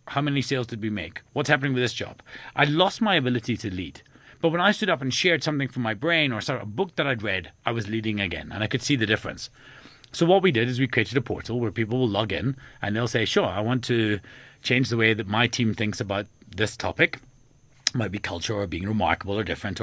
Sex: male